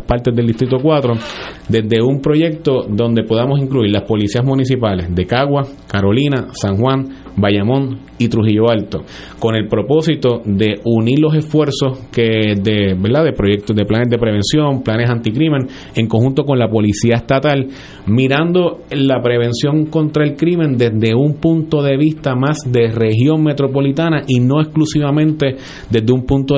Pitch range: 110-140 Hz